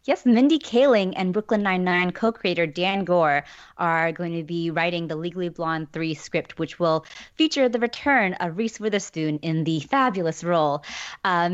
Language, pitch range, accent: English, 165-195 Hz, American